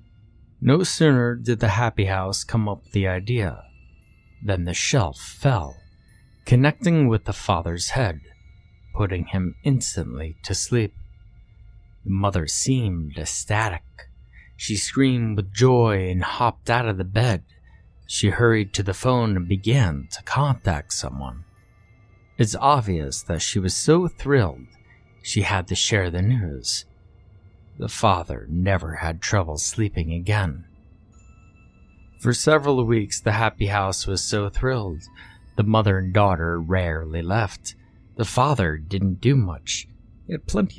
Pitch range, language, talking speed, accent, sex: 90-115 Hz, English, 135 wpm, American, male